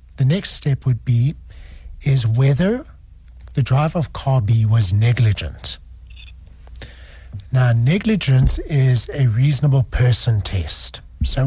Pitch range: 95-150 Hz